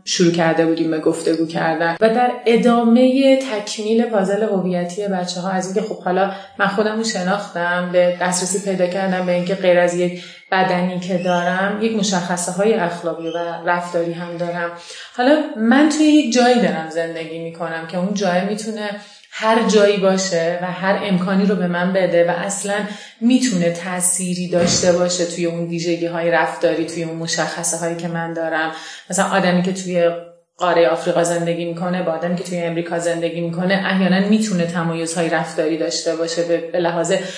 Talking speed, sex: 170 wpm, female